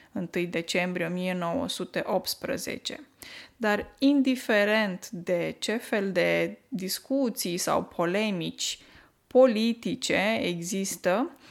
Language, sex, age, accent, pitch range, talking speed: Romanian, female, 20-39, native, 185-240 Hz, 75 wpm